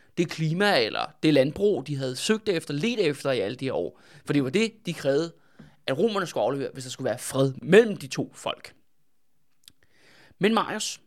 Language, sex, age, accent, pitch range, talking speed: Danish, male, 20-39, native, 140-190 Hz, 195 wpm